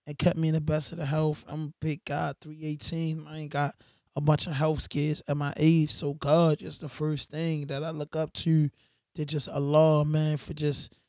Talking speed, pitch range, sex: 225 wpm, 150-170 Hz, male